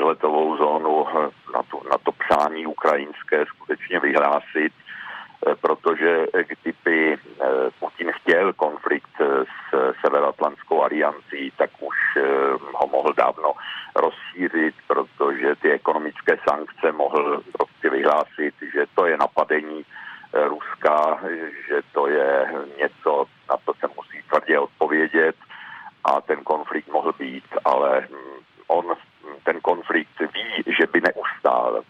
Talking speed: 110 wpm